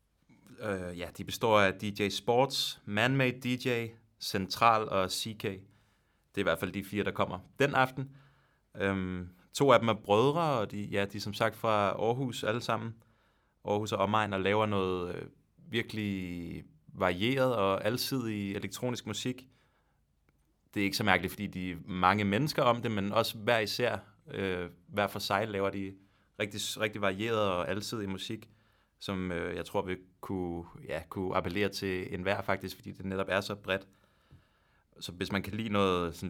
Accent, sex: native, male